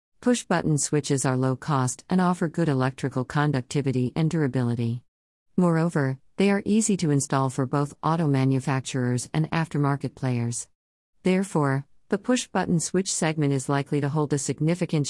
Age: 50-69